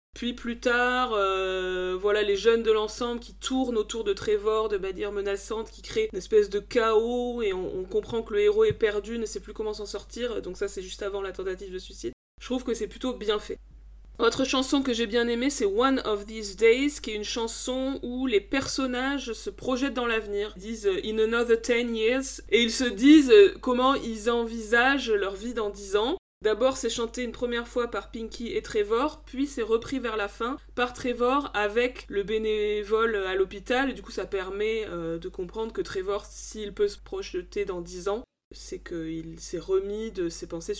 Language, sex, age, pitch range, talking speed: French, female, 20-39, 205-265 Hz, 205 wpm